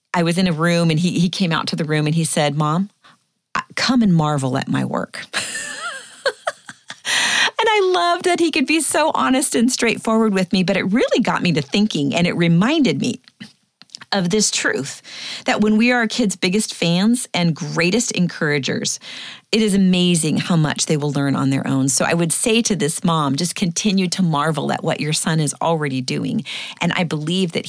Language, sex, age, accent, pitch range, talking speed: English, female, 40-59, American, 150-190 Hz, 205 wpm